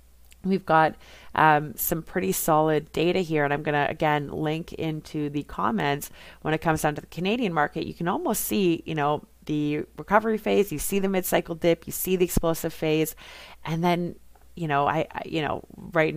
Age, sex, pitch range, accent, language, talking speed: 30-49, female, 150-170 Hz, American, English, 195 wpm